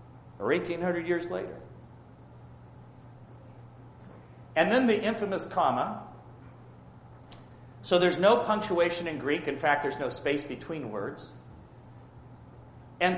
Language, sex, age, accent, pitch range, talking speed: English, male, 40-59, American, 125-180 Hz, 105 wpm